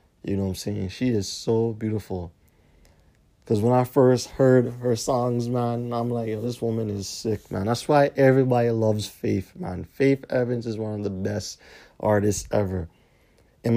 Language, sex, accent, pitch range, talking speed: English, male, American, 105-130 Hz, 180 wpm